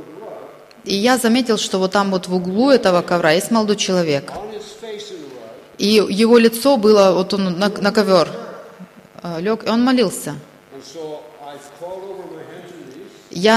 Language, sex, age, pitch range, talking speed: Russian, female, 20-39, 170-215 Hz, 125 wpm